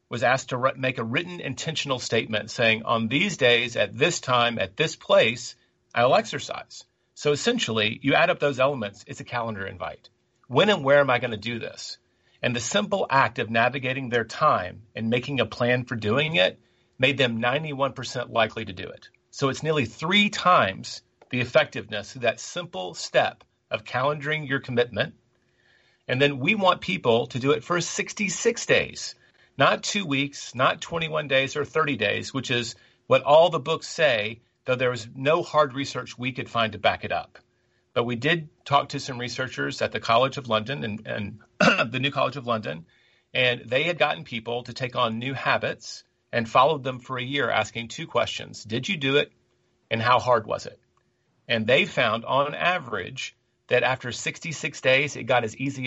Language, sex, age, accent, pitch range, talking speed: English, male, 40-59, American, 115-145 Hz, 190 wpm